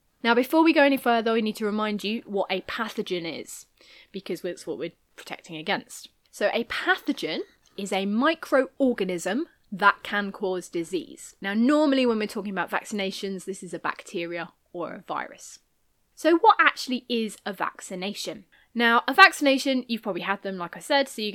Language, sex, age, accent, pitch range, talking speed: English, female, 20-39, British, 190-270 Hz, 175 wpm